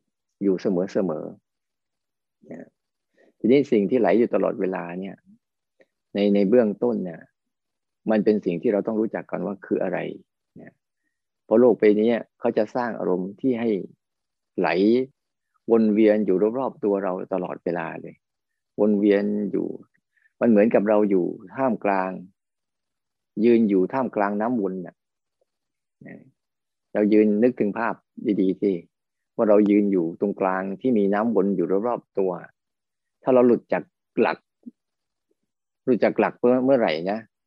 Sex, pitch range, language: male, 95-110 Hz, Thai